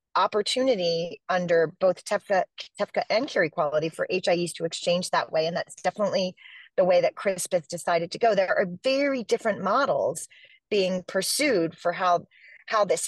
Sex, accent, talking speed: female, American, 165 wpm